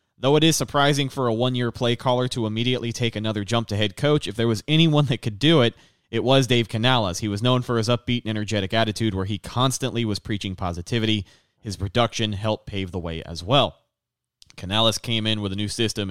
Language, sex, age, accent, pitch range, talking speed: English, male, 30-49, American, 100-120 Hz, 220 wpm